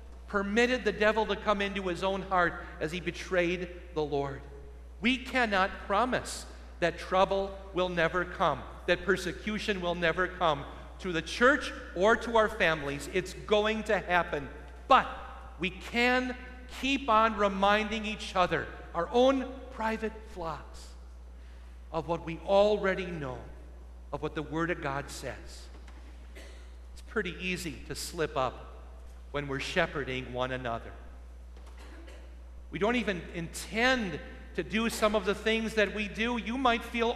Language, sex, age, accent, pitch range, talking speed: English, male, 50-69, American, 165-235 Hz, 145 wpm